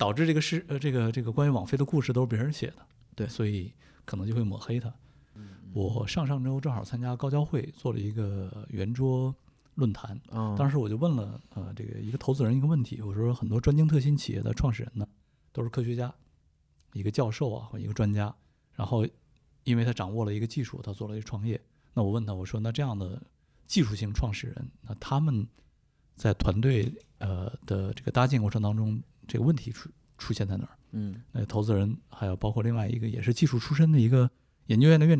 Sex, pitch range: male, 110-135 Hz